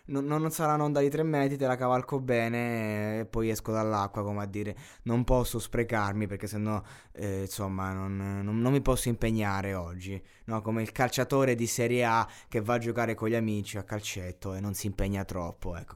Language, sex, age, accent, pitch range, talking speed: Italian, male, 20-39, native, 105-130 Hz, 210 wpm